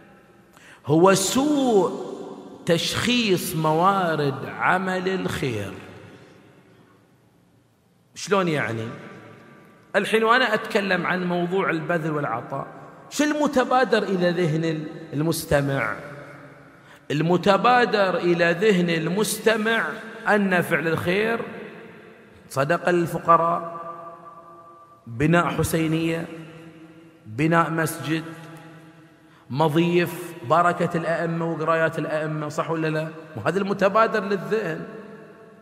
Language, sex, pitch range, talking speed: Arabic, male, 165-225 Hz, 75 wpm